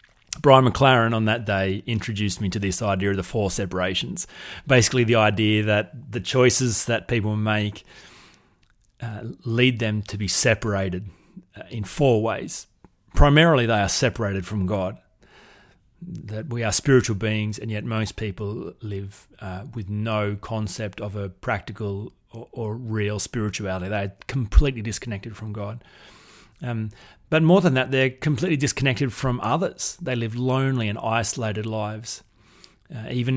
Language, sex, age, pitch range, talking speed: English, male, 30-49, 105-130 Hz, 150 wpm